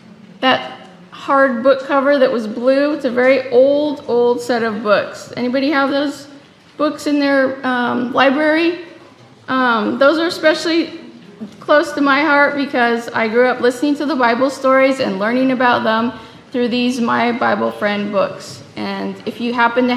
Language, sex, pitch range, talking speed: English, female, 235-280 Hz, 165 wpm